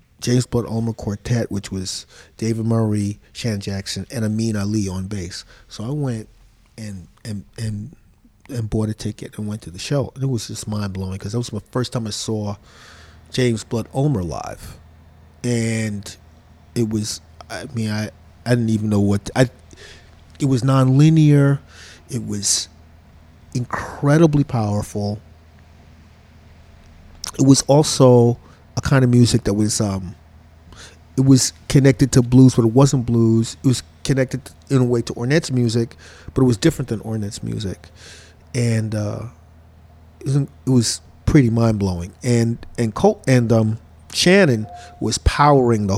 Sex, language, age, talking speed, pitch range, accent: male, English, 40-59, 155 wpm, 90-130 Hz, American